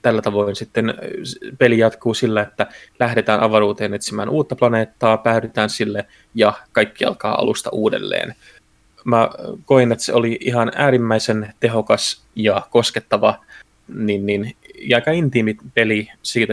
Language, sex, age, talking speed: Finnish, male, 20-39, 130 wpm